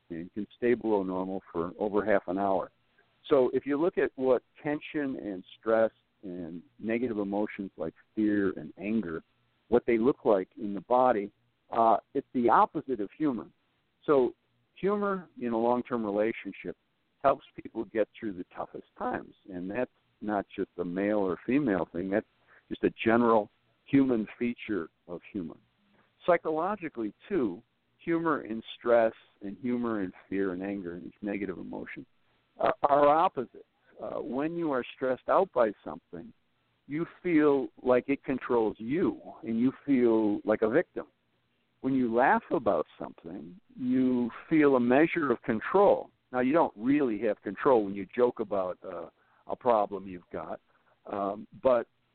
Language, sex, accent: English, male, American